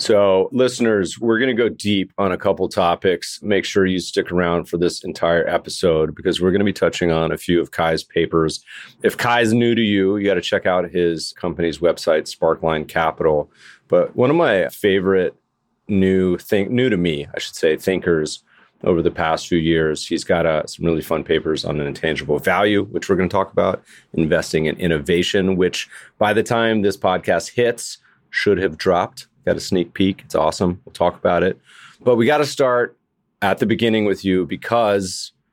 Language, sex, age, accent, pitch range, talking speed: English, male, 30-49, American, 85-110 Hz, 200 wpm